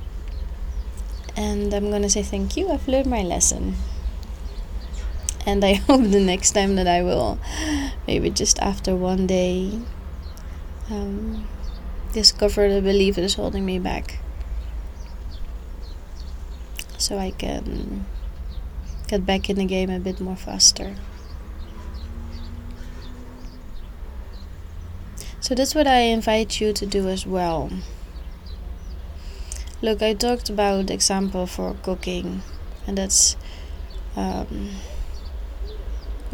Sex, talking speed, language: female, 105 wpm, English